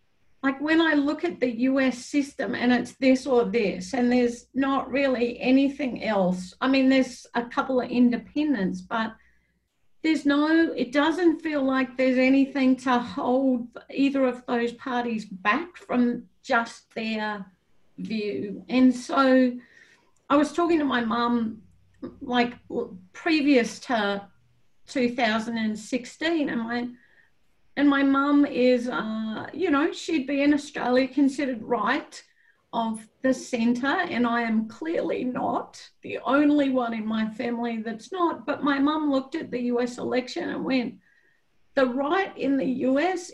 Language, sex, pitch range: English, female, 230-275 Hz